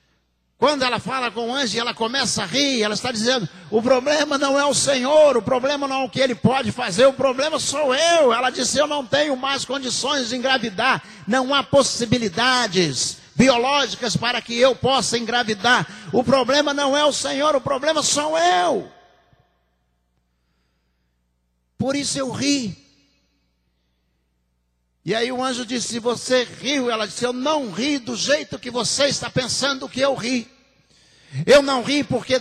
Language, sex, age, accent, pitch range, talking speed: Portuguese, male, 60-79, Brazilian, 195-270 Hz, 165 wpm